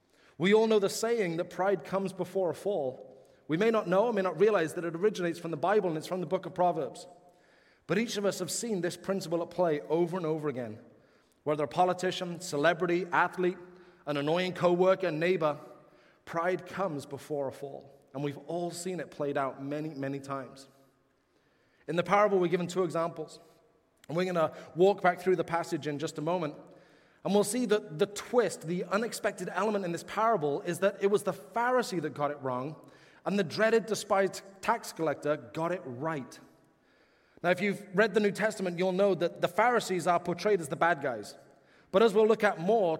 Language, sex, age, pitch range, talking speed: English, male, 30-49, 160-200 Hz, 200 wpm